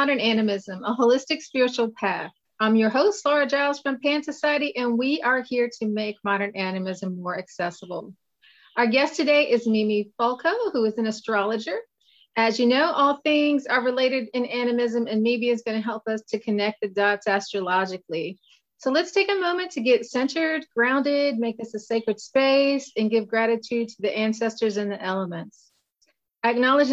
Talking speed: 175 wpm